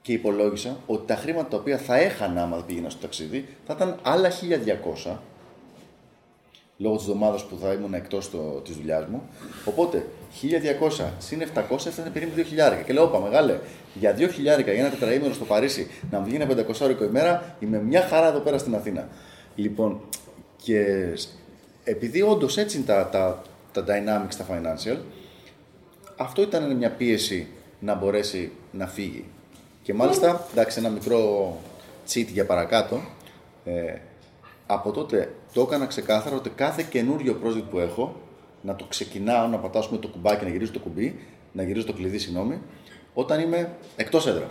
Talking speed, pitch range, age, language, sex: 160 wpm, 100-135 Hz, 20-39, Greek, male